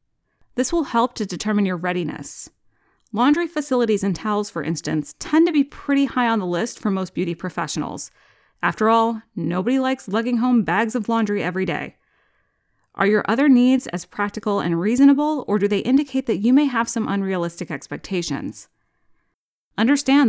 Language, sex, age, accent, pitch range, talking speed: English, female, 30-49, American, 190-245 Hz, 165 wpm